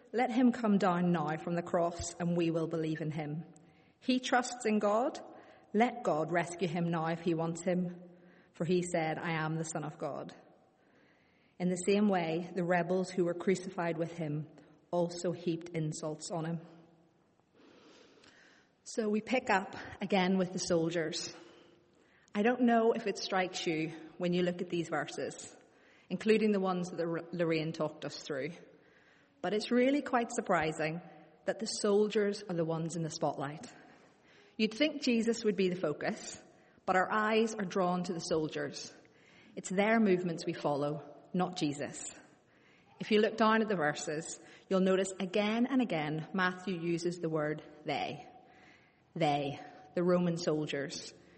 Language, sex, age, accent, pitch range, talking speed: English, female, 30-49, British, 165-195 Hz, 160 wpm